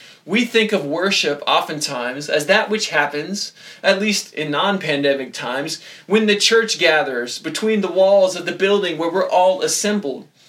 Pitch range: 165-230 Hz